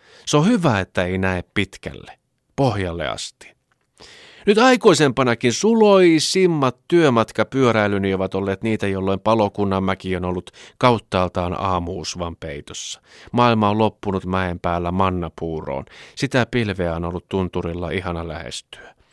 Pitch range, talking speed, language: 90-145 Hz, 115 wpm, Finnish